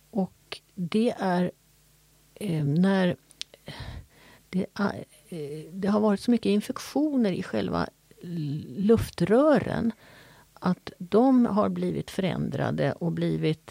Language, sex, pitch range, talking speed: Swedish, female, 170-220 Hz, 90 wpm